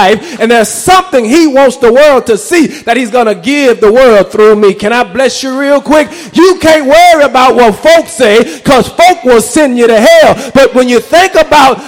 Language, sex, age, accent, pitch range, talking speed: English, male, 30-49, American, 240-325 Hz, 215 wpm